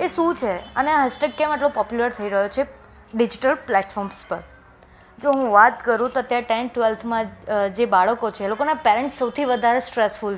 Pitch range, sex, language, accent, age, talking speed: 215-270 Hz, female, Gujarati, native, 20-39, 185 wpm